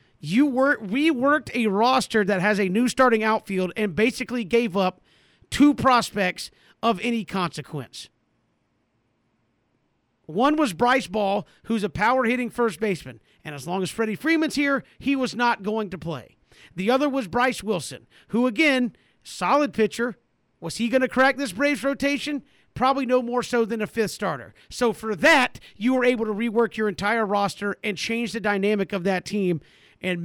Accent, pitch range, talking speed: American, 195-265 Hz, 170 wpm